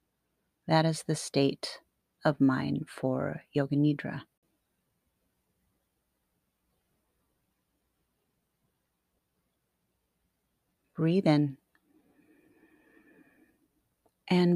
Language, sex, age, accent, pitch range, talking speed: English, female, 40-59, American, 145-180 Hz, 50 wpm